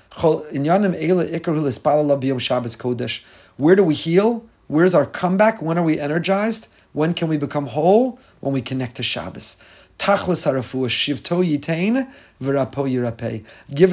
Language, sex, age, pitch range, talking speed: English, male, 40-59, 140-200 Hz, 95 wpm